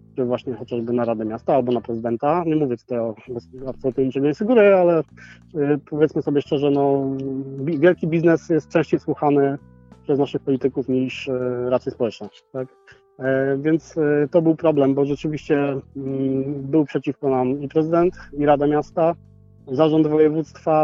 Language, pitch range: Polish, 125-150 Hz